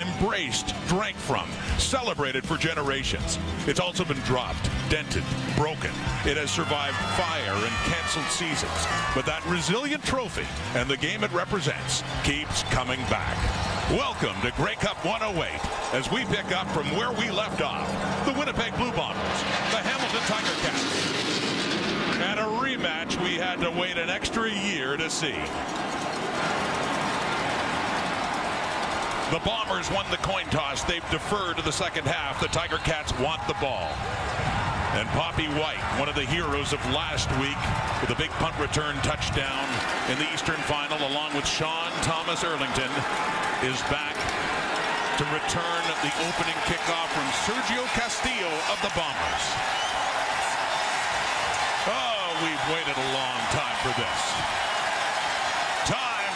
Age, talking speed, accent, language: 50-69, 140 wpm, American, English